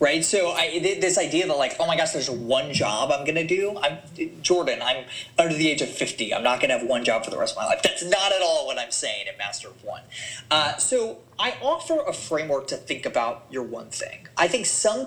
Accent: American